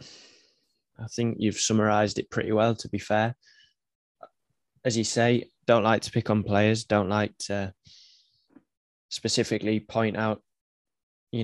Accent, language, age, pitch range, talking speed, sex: British, English, 10-29, 100-120 Hz, 135 wpm, male